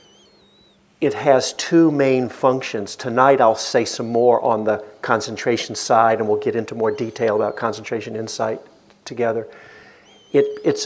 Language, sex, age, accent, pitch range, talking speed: English, male, 50-69, American, 115-140 Hz, 140 wpm